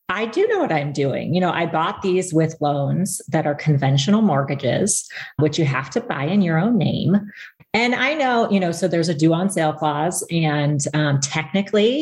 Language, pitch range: English, 150-190 Hz